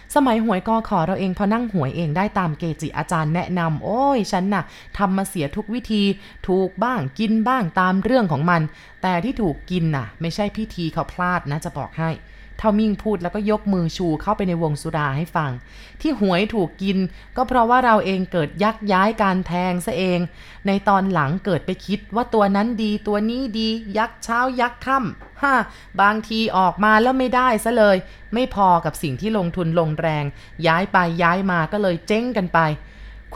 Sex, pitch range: female, 170-215 Hz